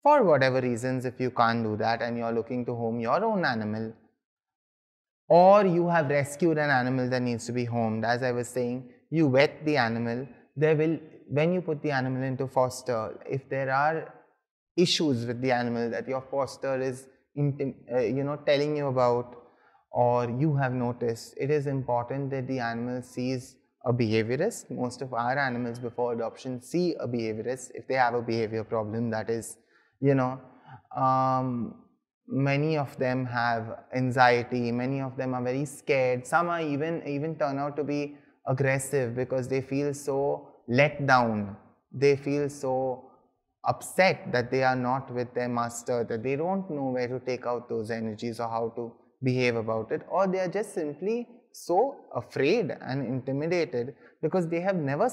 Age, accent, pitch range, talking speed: 20-39, Indian, 120-150 Hz, 175 wpm